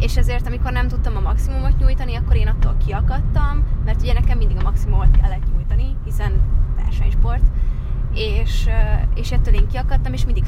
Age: 20-39